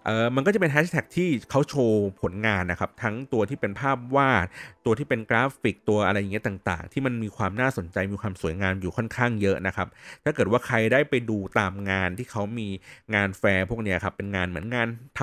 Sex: male